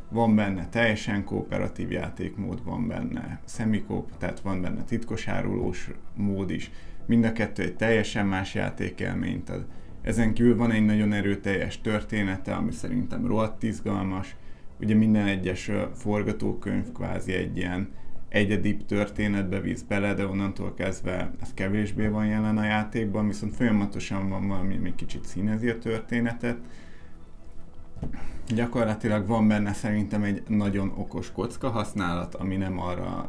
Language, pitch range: Hungarian, 90-110 Hz